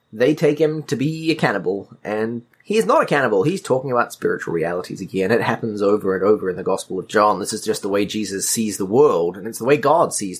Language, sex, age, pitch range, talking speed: English, male, 30-49, 115-160 Hz, 255 wpm